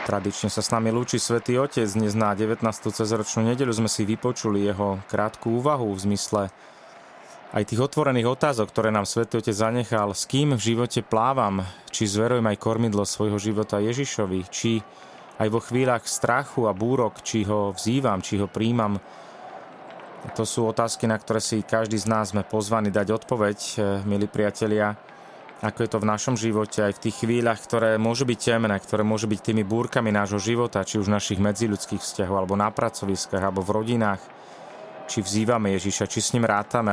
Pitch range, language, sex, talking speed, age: 100-115 Hz, Slovak, male, 175 wpm, 30-49